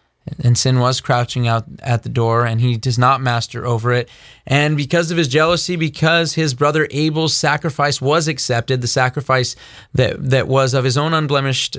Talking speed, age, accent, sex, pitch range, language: 185 wpm, 30-49, American, male, 125-160 Hz, English